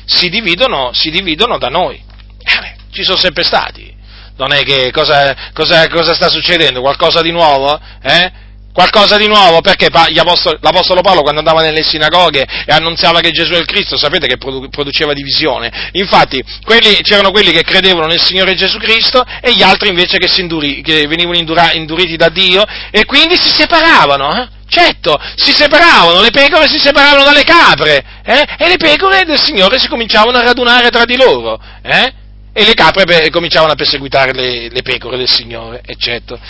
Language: Italian